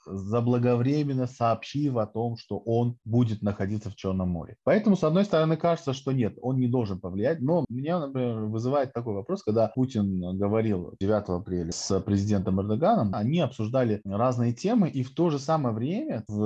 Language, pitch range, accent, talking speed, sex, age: Russian, 105-145 Hz, native, 170 wpm, male, 20-39